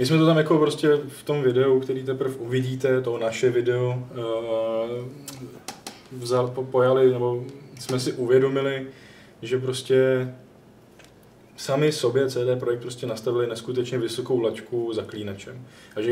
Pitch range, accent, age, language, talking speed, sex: 120-130 Hz, native, 20-39, Czech, 135 wpm, male